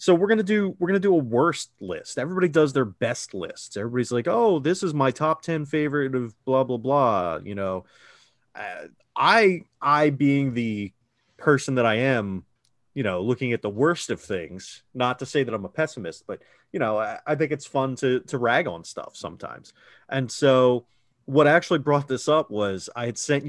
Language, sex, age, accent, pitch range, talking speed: English, male, 30-49, American, 105-135 Hz, 200 wpm